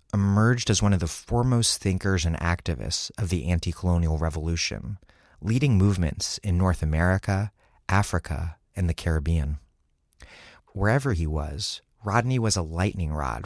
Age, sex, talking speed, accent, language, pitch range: 30-49, male, 140 wpm, American, English, 80-105 Hz